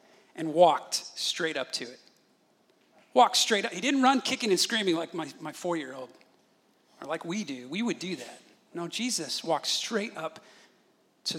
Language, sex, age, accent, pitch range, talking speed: English, male, 40-59, American, 175-225 Hz, 175 wpm